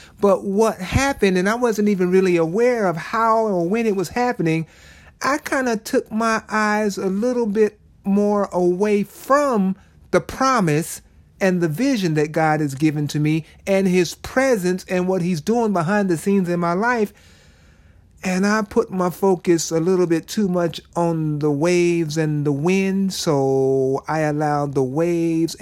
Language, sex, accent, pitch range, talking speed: English, male, American, 140-195 Hz, 170 wpm